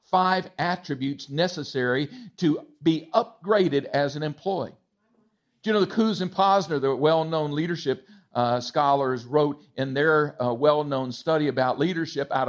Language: English